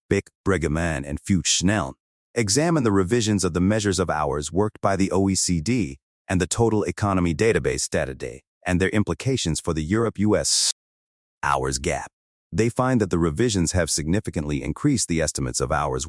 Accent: American